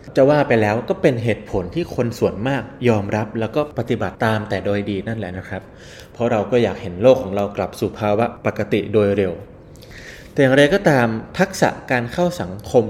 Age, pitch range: 20-39, 105-130 Hz